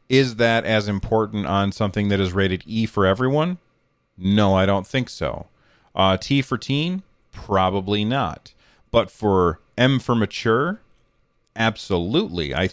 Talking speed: 140 wpm